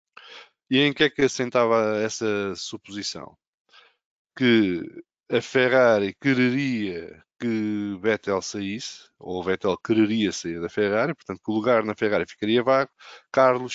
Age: 20-39